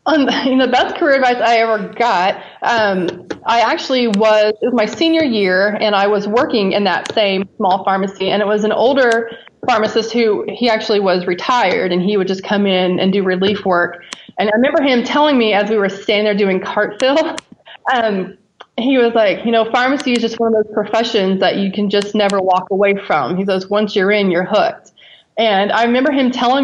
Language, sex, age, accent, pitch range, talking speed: English, female, 20-39, American, 195-245 Hz, 215 wpm